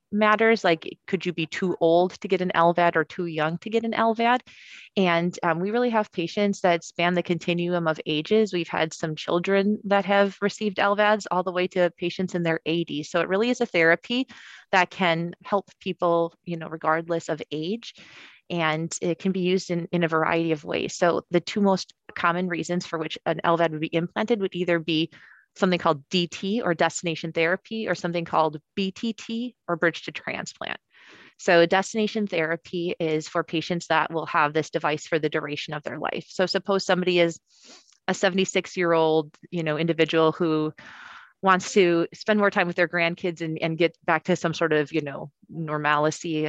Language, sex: English, female